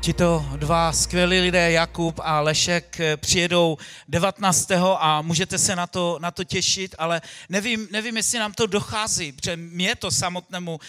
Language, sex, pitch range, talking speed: Czech, male, 170-200 Hz, 155 wpm